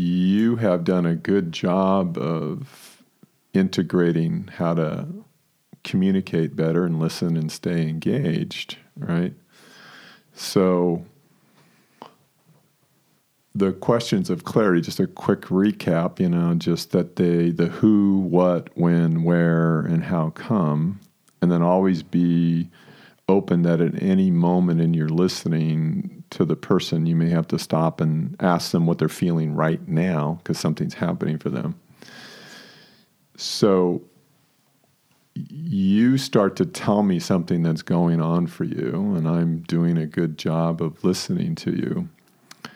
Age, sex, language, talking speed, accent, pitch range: 50-69, male, English, 135 wpm, American, 85-100 Hz